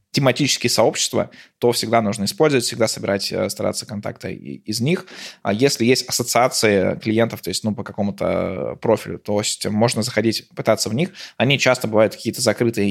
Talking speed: 165 wpm